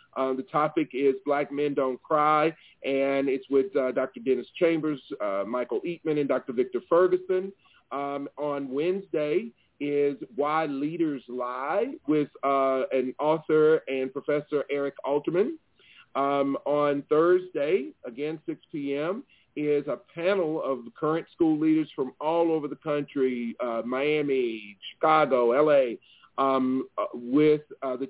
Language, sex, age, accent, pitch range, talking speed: English, male, 40-59, American, 135-165 Hz, 135 wpm